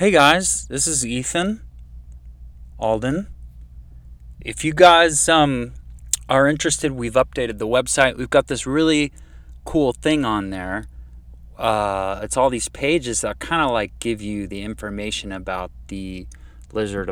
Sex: male